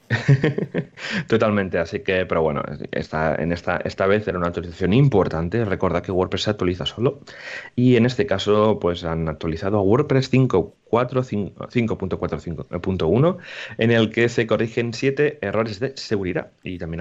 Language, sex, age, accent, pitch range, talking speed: Spanish, male, 30-49, Spanish, 90-110 Hz, 160 wpm